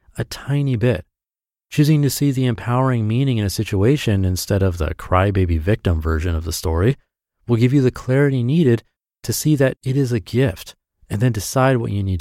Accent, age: American, 30-49